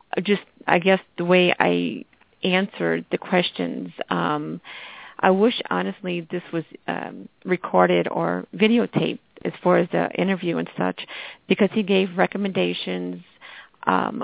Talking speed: 130 wpm